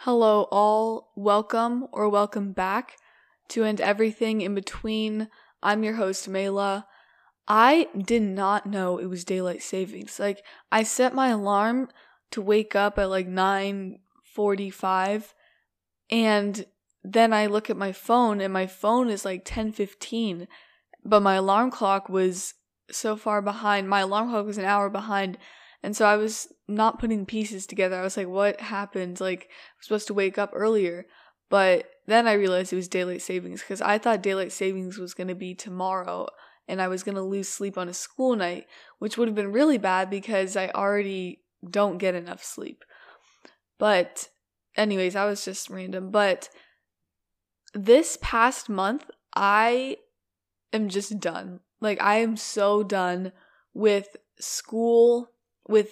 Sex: female